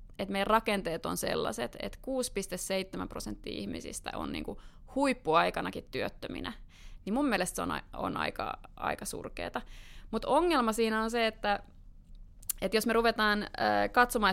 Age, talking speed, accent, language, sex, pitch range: 30-49, 140 wpm, native, Finnish, female, 180-220 Hz